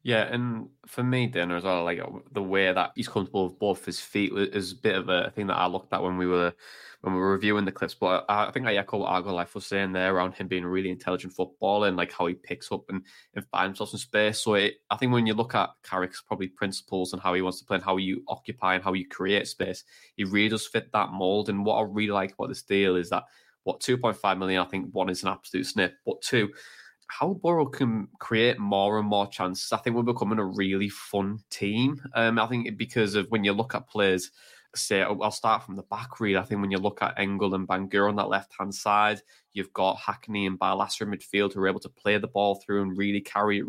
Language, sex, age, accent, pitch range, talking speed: English, male, 20-39, British, 95-110 Hz, 260 wpm